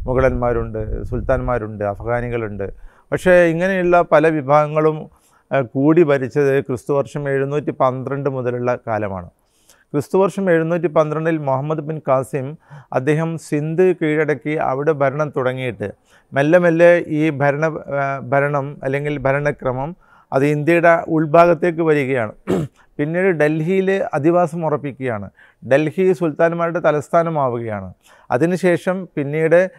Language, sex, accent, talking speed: Malayalam, male, native, 95 wpm